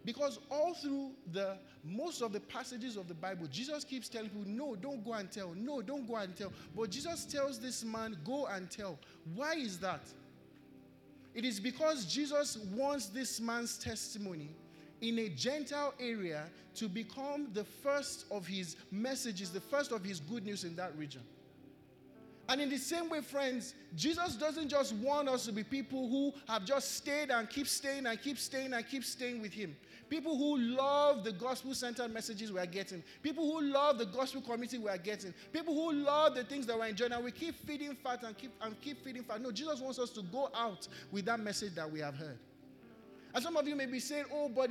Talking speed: 205 wpm